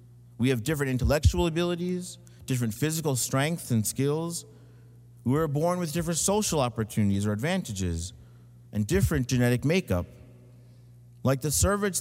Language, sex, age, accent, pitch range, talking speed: English, male, 50-69, American, 115-155 Hz, 130 wpm